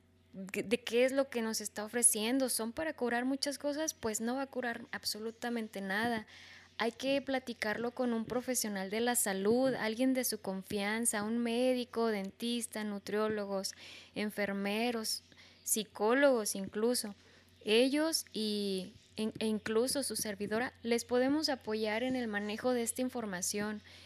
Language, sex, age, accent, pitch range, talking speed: Spanish, female, 10-29, Mexican, 210-255 Hz, 135 wpm